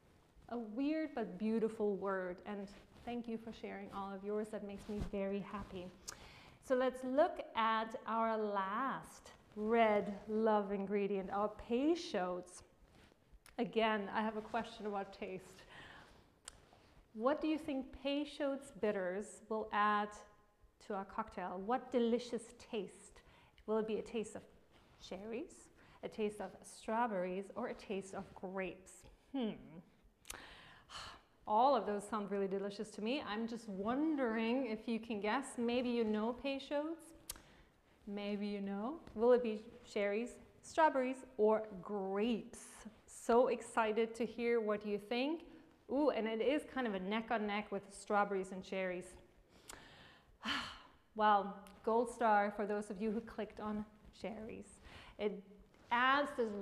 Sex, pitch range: female, 205-240 Hz